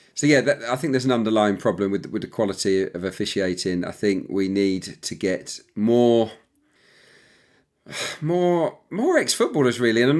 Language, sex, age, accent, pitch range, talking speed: English, male, 40-59, British, 100-125 Hz, 170 wpm